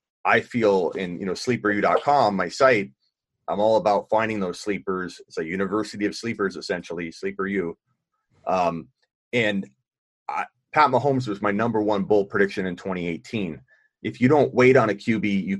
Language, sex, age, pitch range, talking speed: English, male, 30-49, 95-120 Hz, 160 wpm